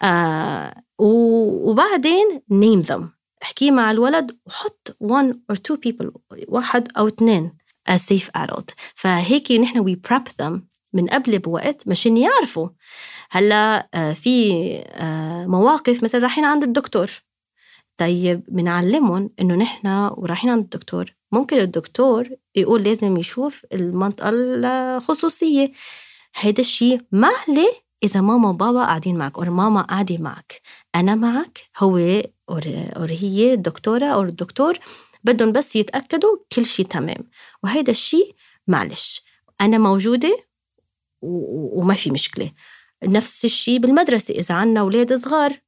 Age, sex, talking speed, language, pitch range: 20-39, female, 125 wpm, Arabic, 190-265 Hz